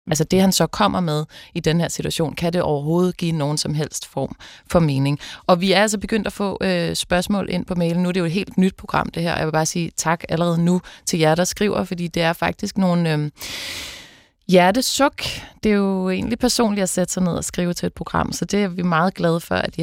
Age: 30-49